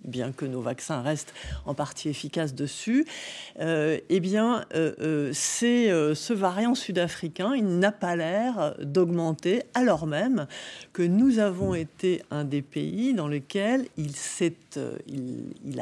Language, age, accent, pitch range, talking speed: French, 50-69, French, 150-200 Hz, 120 wpm